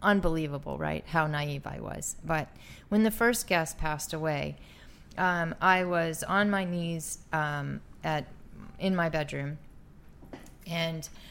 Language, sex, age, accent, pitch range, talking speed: English, female, 30-49, American, 145-175 Hz, 135 wpm